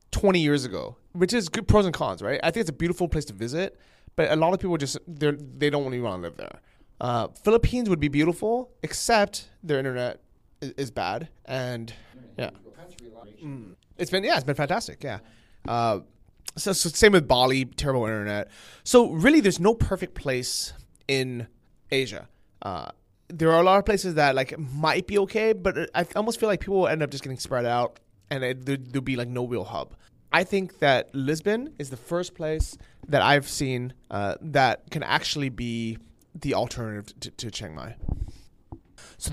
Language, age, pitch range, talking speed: English, 20-39, 120-180 Hz, 185 wpm